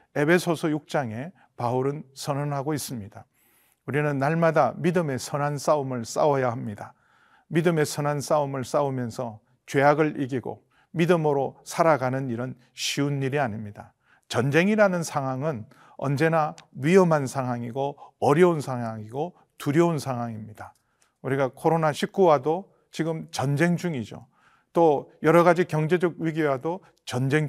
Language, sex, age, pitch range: Korean, male, 40-59, 130-160 Hz